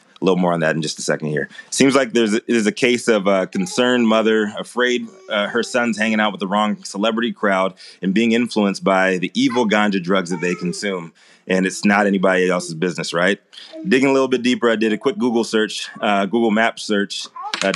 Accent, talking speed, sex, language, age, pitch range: American, 225 wpm, male, English, 30-49, 95-115 Hz